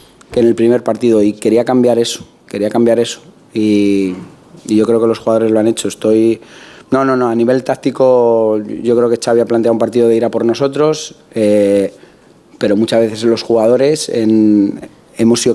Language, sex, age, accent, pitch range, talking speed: Spanish, male, 30-49, Spanish, 115-125 Hz, 195 wpm